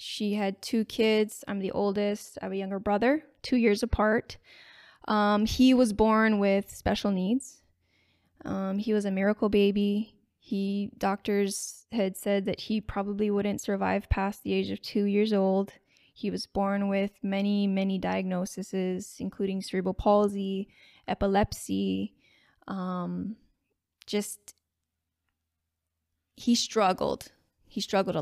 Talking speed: 130 wpm